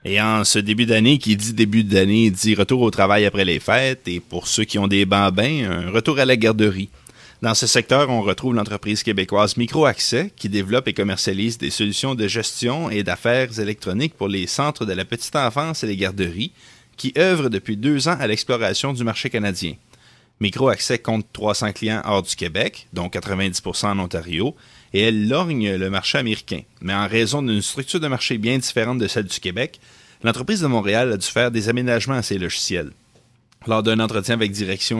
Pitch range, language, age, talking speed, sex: 100-125 Hz, French, 30-49, 200 wpm, male